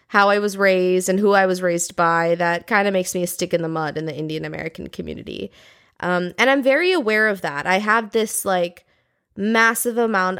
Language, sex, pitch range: English, female, 175-230 Hz